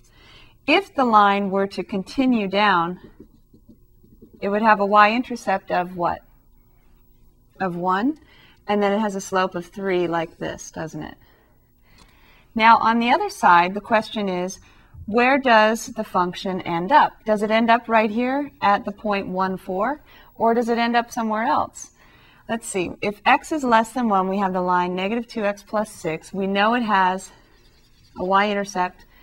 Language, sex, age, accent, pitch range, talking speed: English, female, 40-59, American, 185-230 Hz, 170 wpm